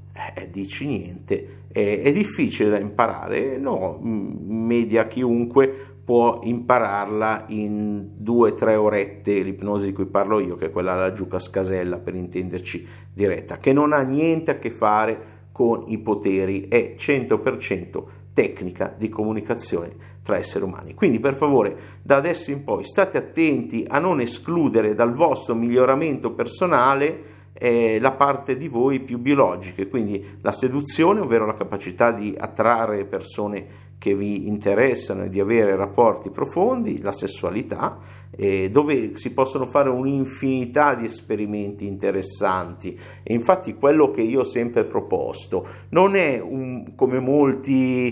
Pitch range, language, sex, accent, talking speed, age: 105-140 Hz, Italian, male, native, 140 wpm, 50-69